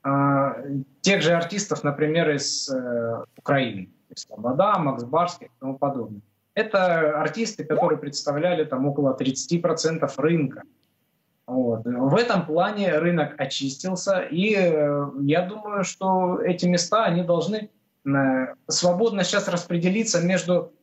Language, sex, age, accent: Russian, male, 20-39, native